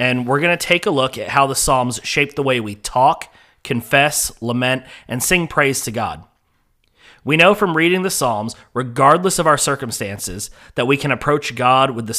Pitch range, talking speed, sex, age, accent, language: 115-145 Hz, 195 wpm, male, 30-49, American, English